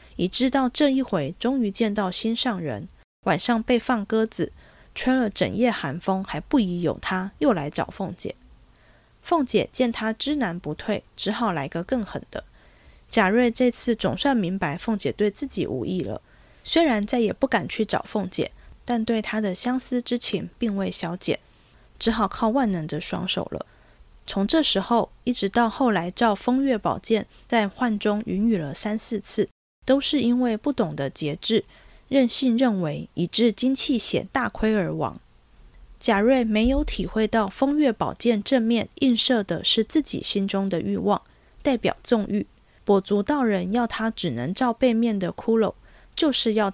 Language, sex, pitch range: Chinese, female, 195-250 Hz